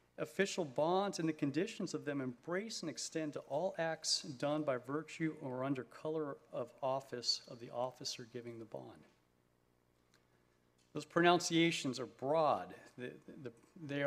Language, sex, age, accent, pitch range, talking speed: English, male, 50-69, American, 120-160 Hz, 135 wpm